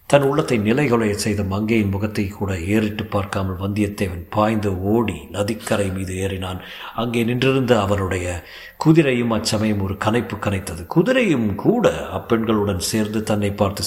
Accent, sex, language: native, male, Tamil